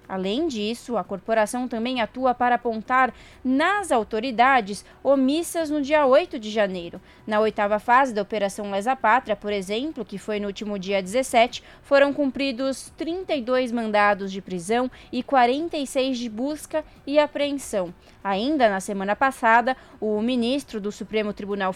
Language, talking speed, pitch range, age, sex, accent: Portuguese, 145 wpm, 215-270 Hz, 20-39, female, Brazilian